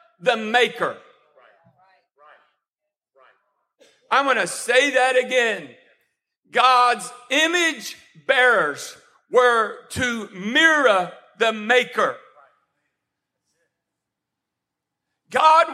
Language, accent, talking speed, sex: English, American, 65 wpm, male